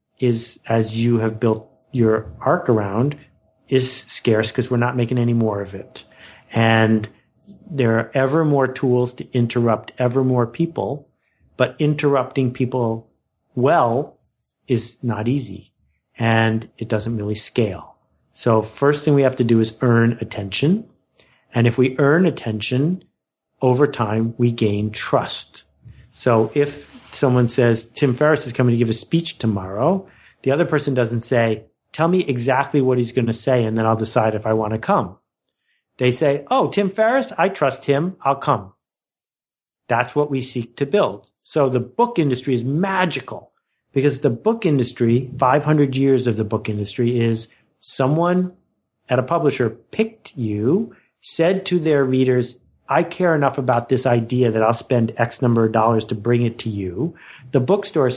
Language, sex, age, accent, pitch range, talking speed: English, male, 50-69, American, 115-140 Hz, 165 wpm